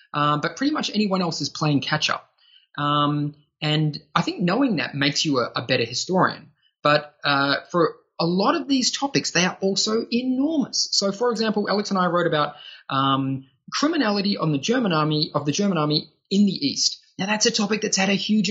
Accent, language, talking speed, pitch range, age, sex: Australian, English, 205 wpm, 150-210 Hz, 20-39, male